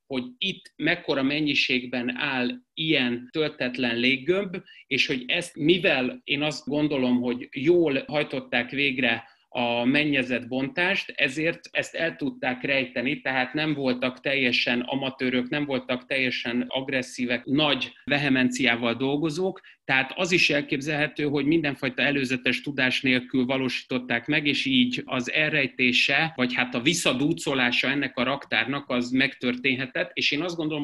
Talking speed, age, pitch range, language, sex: 130 wpm, 30-49, 125-150 Hz, Hungarian, male